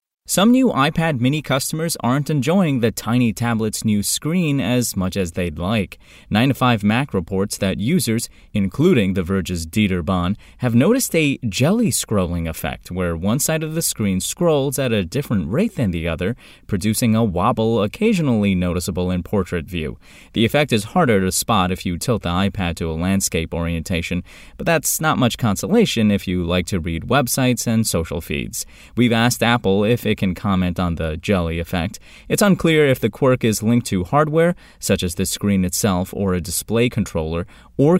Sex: male